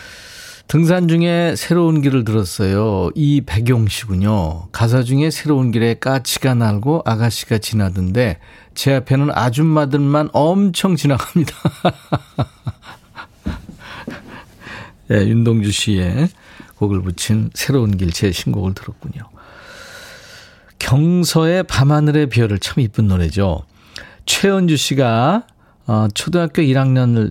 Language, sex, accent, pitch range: Korean, male, native, 110-155 Hz